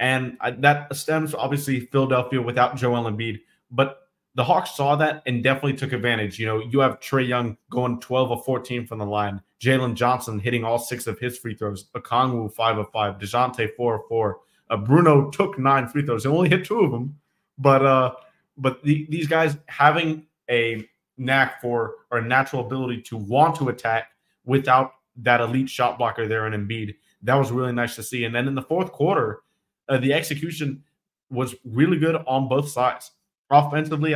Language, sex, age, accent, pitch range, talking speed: English, male, 20-39, American, 120-140 Hz, 185 wpm